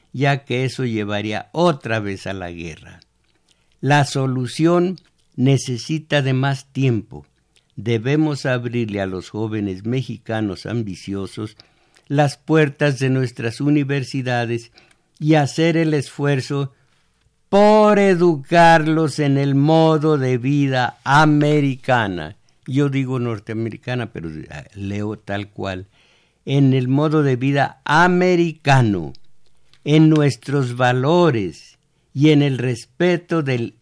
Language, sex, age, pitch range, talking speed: Spanish, male, 60-79, 115-150 Hz, 105 wpm